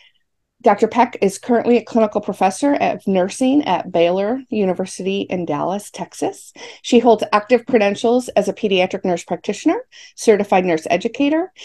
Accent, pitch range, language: American, 185-235 Hz, English